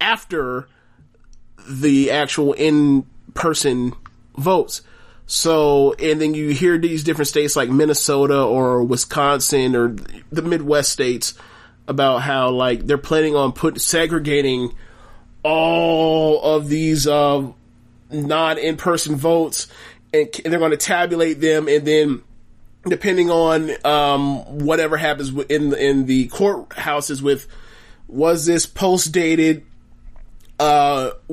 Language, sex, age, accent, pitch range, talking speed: English, male, 30-49, American, 120-155 Hz, 115 wpm